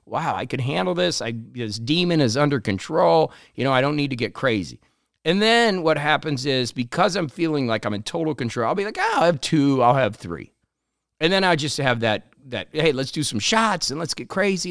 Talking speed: 240 wpm